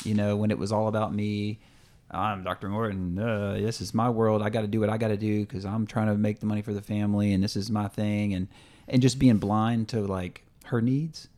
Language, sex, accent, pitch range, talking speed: English, male, American, 100-120 Hz, 260 wpm